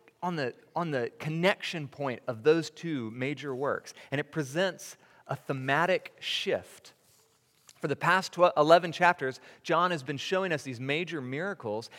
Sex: male